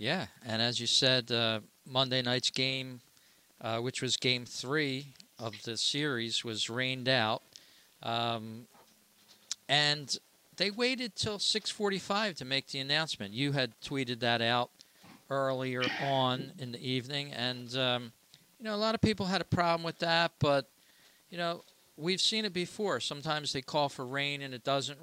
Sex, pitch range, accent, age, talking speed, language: male, 120-165 Hz, American, 50-69, 165 wpm, English